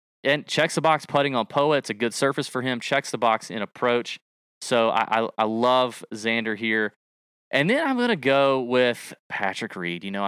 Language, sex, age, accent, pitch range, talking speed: English, male, 20-39, American, 100-125 Hz, 205 wpm